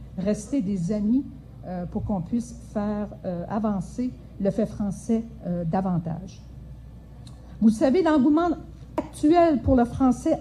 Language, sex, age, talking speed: French, female, 50-69, 125 wpm